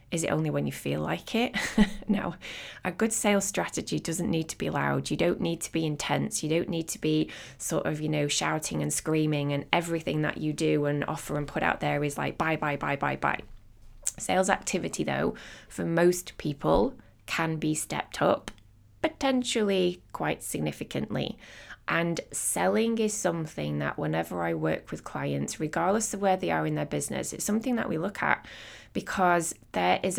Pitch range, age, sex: 105-180 Hz, 20-39, female